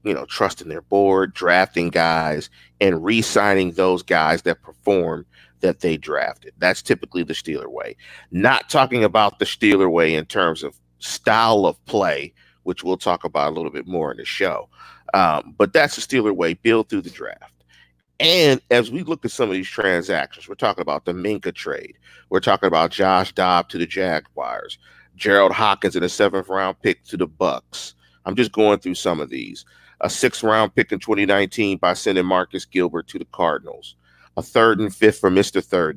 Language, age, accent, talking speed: English, 40-59, American, 185 wpm